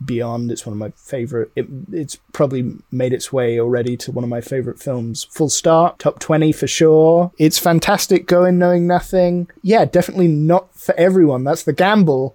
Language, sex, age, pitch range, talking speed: English, male, 20-39, 135-175 Hz, 185 wpm